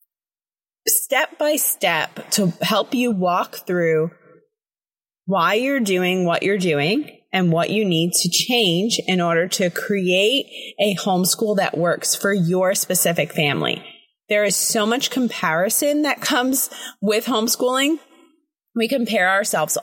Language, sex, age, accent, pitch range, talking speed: English, female, 20-39, American, 175-230 Hz, 125 wpm